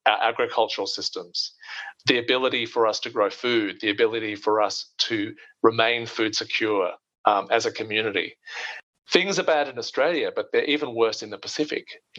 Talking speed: 170 wpm